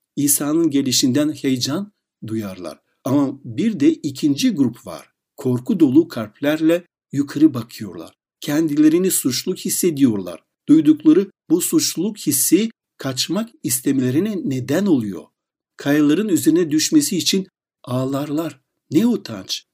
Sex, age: male, 60-79